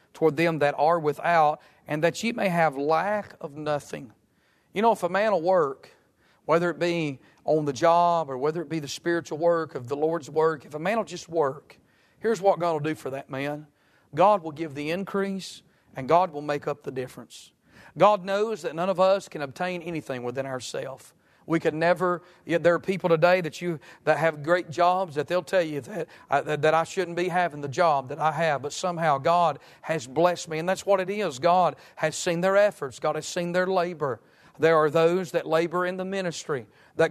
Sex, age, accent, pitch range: male, 40-59, American, 155-180 Hz